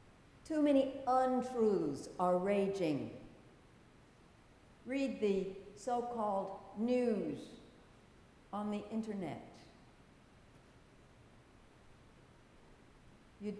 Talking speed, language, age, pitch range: 55 wpm, English, 60-79, 175-240 Hz